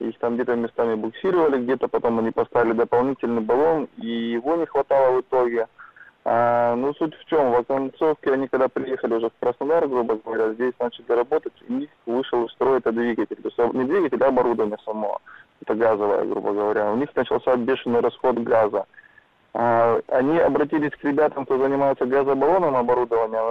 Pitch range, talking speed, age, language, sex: 115-140 Hz, 165 wpm, 20-39, Russian, male